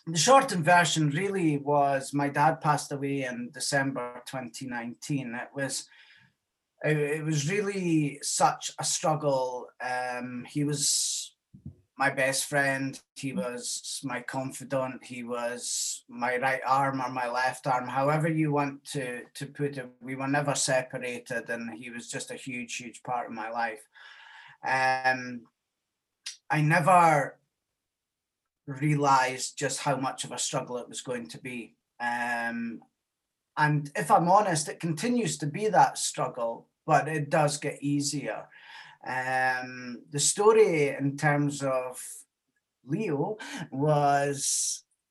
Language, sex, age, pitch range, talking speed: English, male, 30-49, 125-150 Hz, 135 wpm